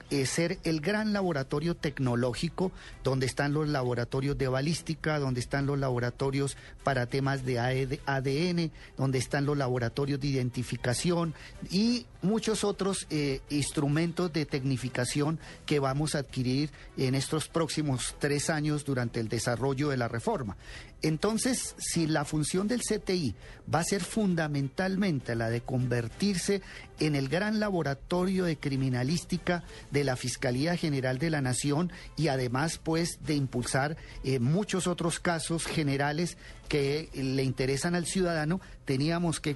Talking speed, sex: 135 wpm, male